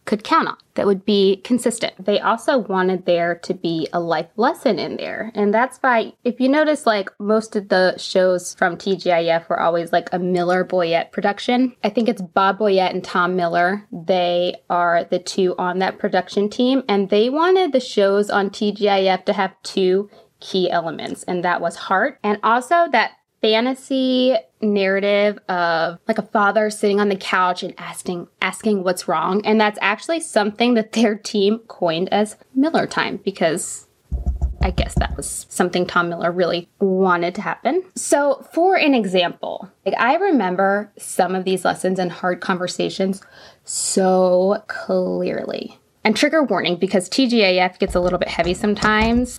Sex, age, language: female, 20-39, English